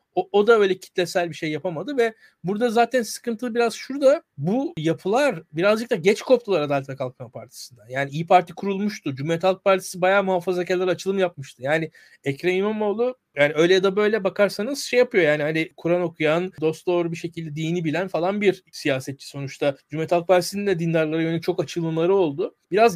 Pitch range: 155-200 Hz